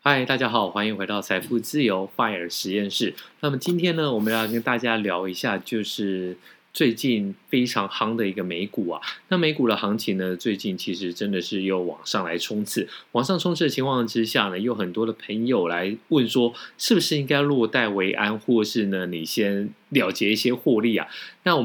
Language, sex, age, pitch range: Chinese, male, 20-39, 100-125 Hz